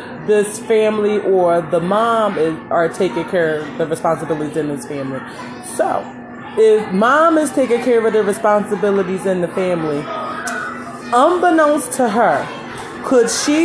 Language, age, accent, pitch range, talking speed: English, 20-39, American, 200-260 Hz, 135 wpm